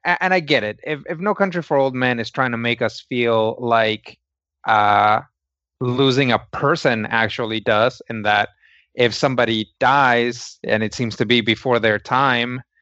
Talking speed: 175 wpm